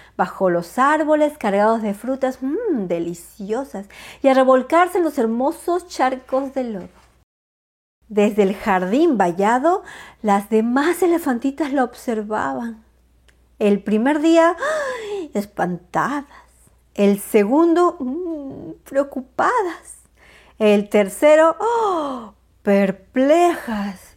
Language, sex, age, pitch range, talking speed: Spanish, female, 50-69, 200-300 Hz, 85 wpm